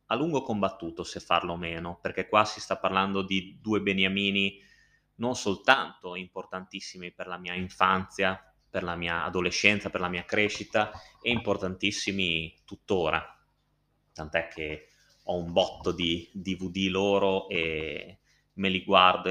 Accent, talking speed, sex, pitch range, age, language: native, 140 wpm, male, 90-100 Hz, 20-39, Italian